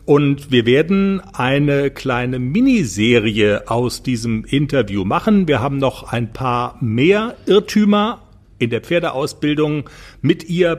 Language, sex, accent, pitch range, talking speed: German, male, German, 120-165 Hz, 120 wpm